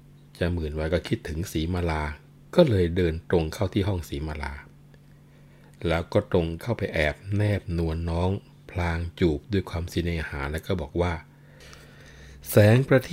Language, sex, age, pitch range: Thai, male, 60-79, 80-100 Hz